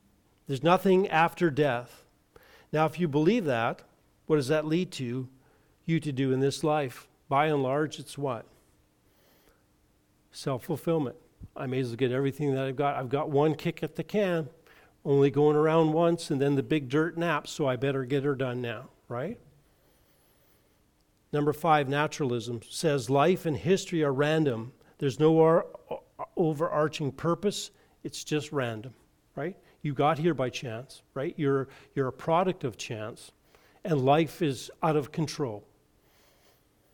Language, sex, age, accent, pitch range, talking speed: English, male, 50-69, American, 135-160 Hz, 155 wpm